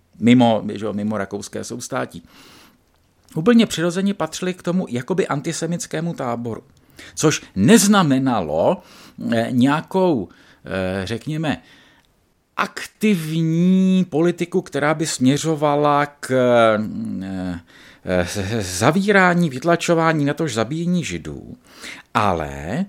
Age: 50-69